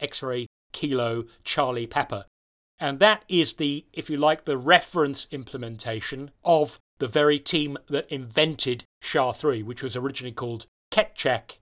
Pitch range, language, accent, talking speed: 125-155 Hz, English, British, 130 wpm